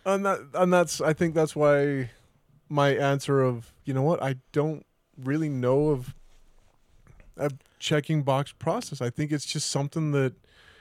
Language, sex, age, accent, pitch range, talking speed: English, male, 20-39, American, 125-150 Hz, 160 wpm